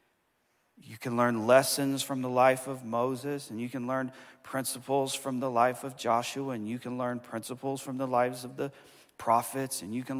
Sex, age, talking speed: male, 40-59, 195 wpm